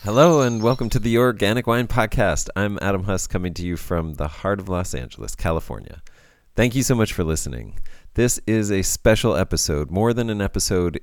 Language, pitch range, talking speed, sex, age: English, 80-105 Hz, 195 wpm, male, 30-49